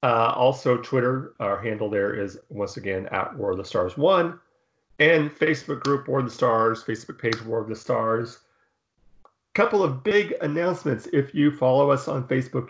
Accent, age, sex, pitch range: American, 40-59, male, 115-140 Hz